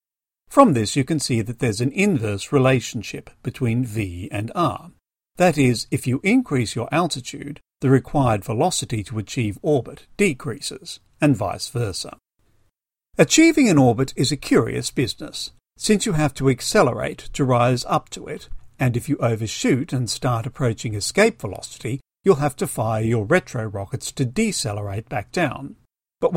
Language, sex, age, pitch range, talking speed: English, male, 50-69, 110-145 Hz, 155 wpm